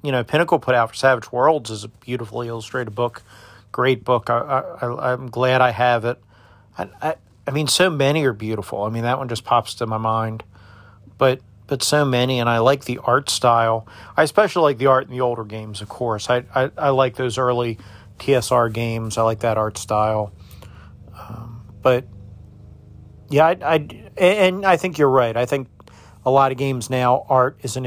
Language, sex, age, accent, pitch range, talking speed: English, male, 40-59, American, 110-135 Hz, 200 wpm